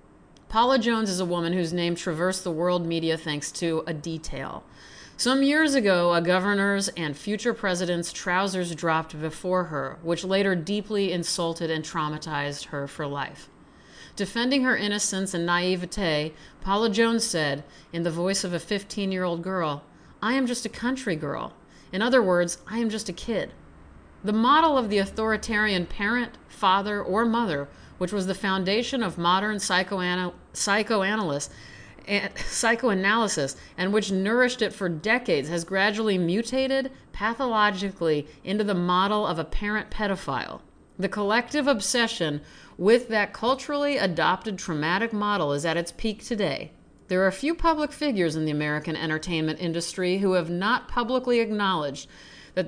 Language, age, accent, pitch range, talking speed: English, 40-59, American, 170-215 Hz, 150 wpm